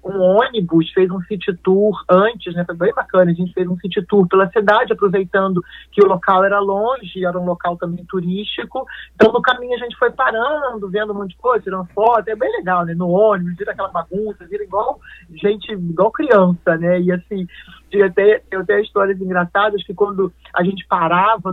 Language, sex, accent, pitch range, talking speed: Portuguese, male, Brazilian, 175-210 Hz, 200 wpm